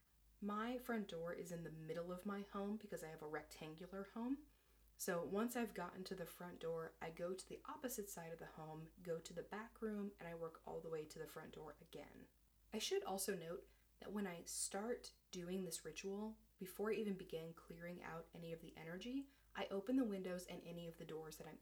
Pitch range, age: 165-205 Hz, 20-39